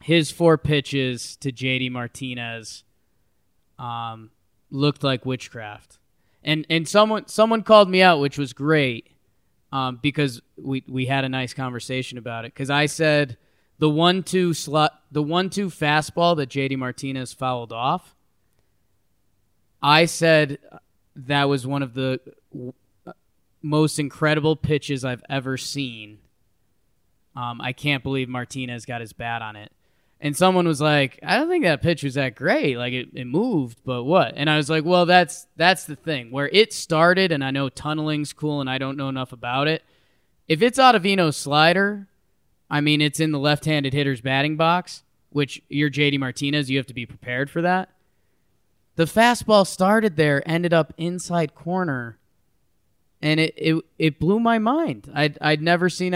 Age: 20-39